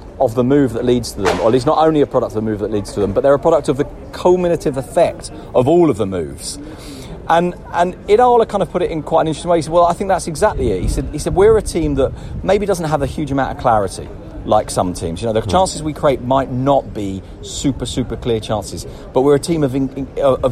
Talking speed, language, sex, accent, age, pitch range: 270 wpm, English, male, British, 40-59, 115-170 Hz